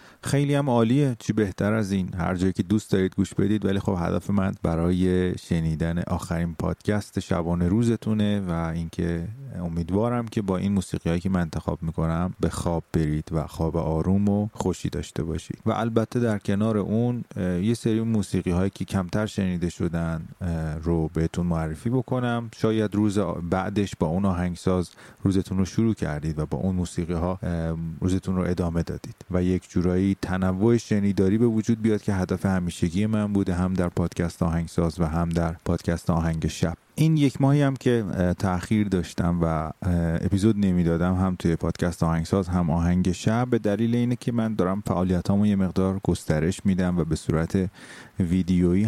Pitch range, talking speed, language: 85-105 Hz, 165 wpm, Persian